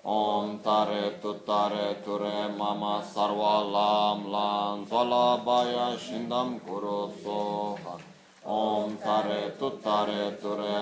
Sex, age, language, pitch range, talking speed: male, 30-49, Italian, 100-105 Hz, 85 wpm